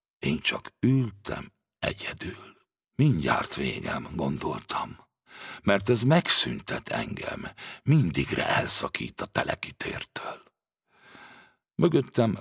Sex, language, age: male, Hungarian, 60-79